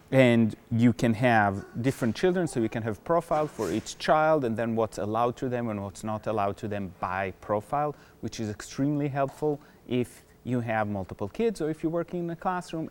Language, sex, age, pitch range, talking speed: English, male, 30-49, 100-135 Hz, 205 wpm